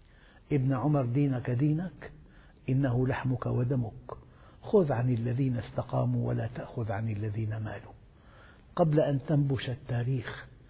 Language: Arabic